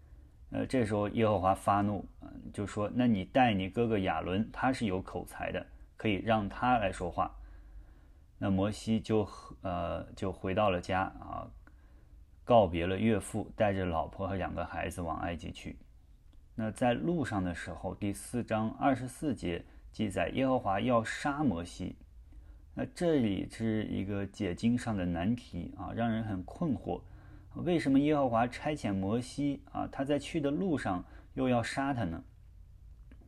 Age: 20-39